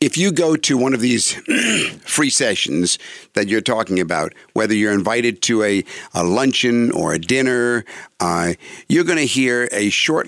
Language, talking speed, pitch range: English, 175 wpm, 100-130 Hz